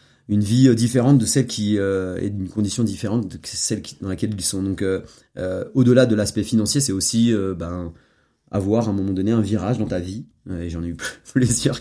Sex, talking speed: male, 230 wpm